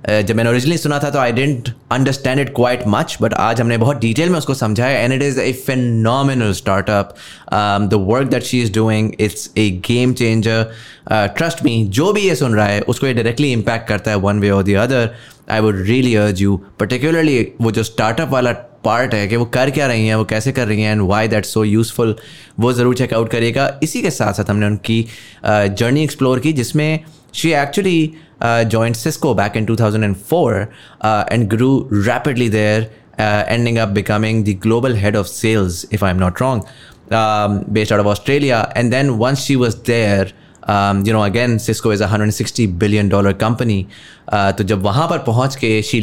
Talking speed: 175 wpm